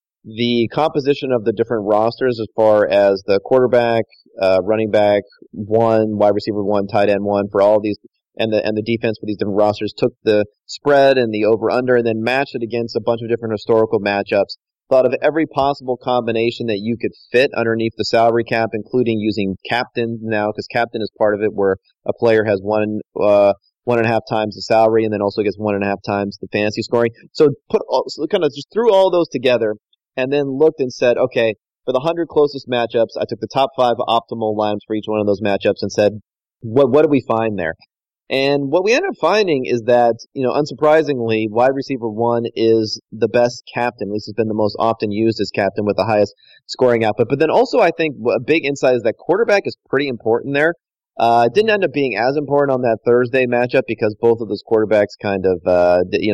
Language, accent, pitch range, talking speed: English, American, 105-130 Hz, 225 wpm